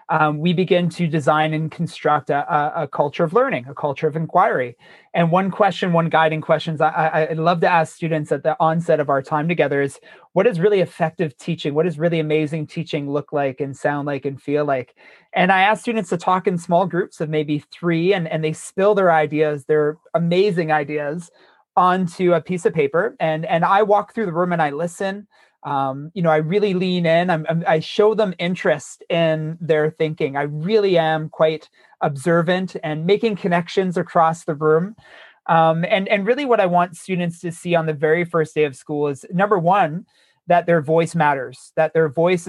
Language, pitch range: English, 155-180 Hz